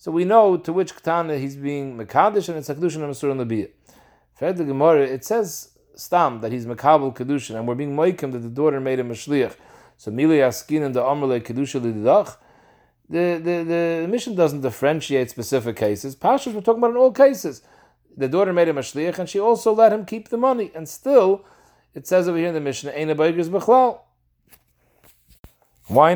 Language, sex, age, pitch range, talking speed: English, male, 40-59, 130-170 Hz, 190 wpm